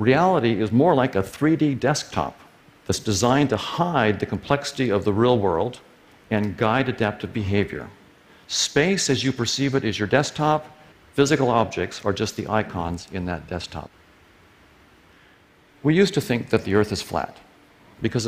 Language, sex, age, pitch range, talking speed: English, male, 60-79, 95-130 Hz, 160 wpm